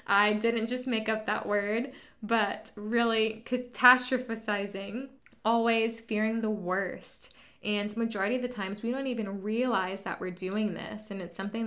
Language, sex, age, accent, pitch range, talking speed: English, female, 20-39, American, 190-220 Hz, 155 wpm